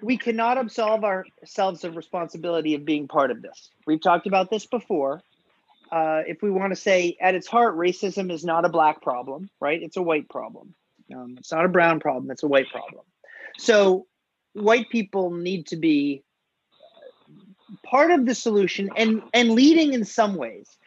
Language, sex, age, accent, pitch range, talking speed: English, male, 40-59, American, 165-230 Hz, 175 wpm